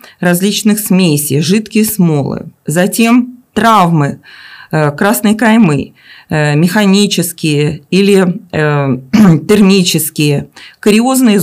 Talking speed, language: 65 wpm, Russian